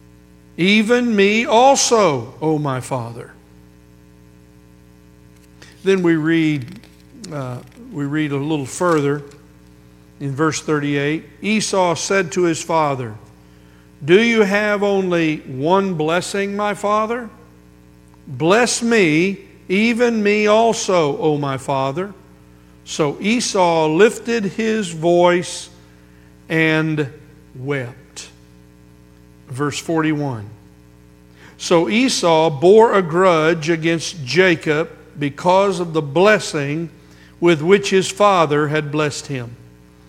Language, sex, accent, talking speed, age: English, male, American, 95 wpm, 60-79